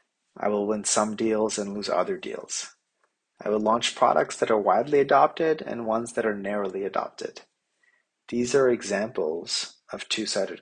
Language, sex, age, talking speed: English, male, 30-49, 160 wpm